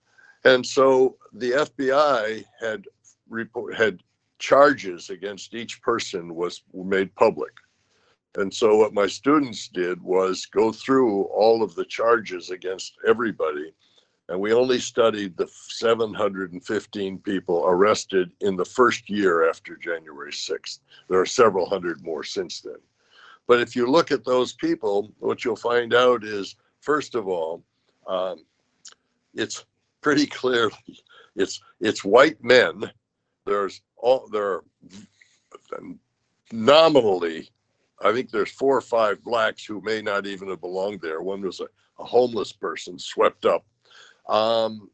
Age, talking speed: 60-79, 135 wpm